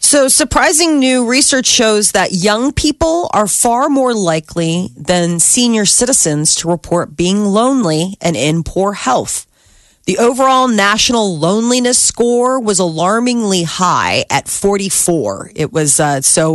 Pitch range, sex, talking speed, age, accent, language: 160-210 Hz, female, 135 wpm, 30-49, American, English